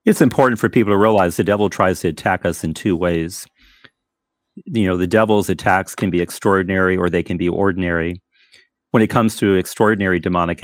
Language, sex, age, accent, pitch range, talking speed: English, male, 40-59, American, 90-100 Hz, 190 wpm